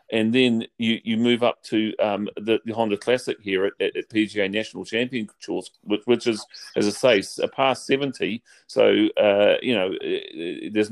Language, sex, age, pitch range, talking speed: English, male, 40-59, 100-125 Hz, 180 wpm